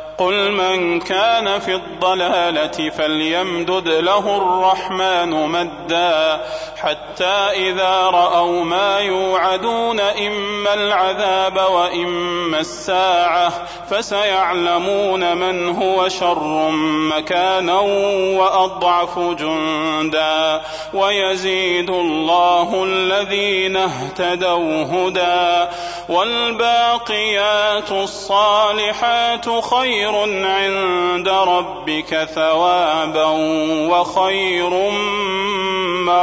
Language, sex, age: Arabic, male, 30-49